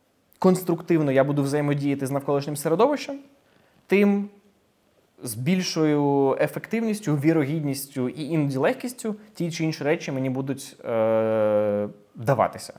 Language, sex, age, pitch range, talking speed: Ukrainian, male, 20-39, 120-150 Hz, 110 wpm